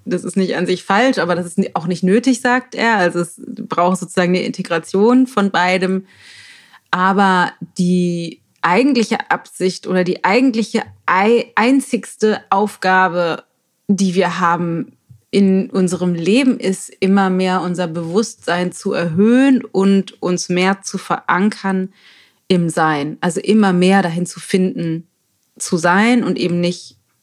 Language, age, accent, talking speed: German, 30-49, German, 135 wpm